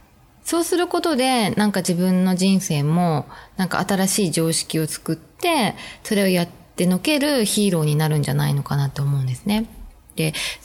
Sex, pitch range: female, 160-230 Hz